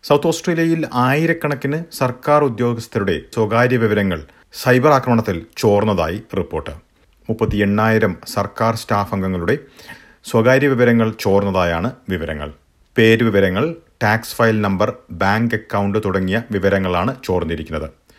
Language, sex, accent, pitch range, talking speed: Malayalam, male, native, 100-120 Hz, 90 wpm